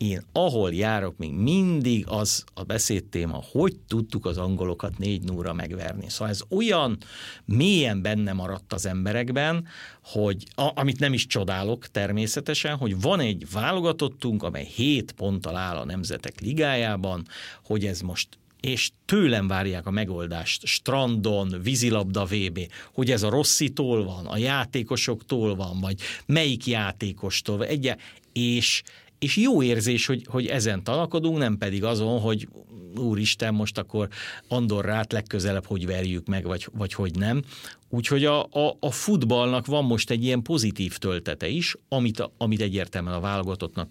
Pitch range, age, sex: 95-130 Hz, 50-69, male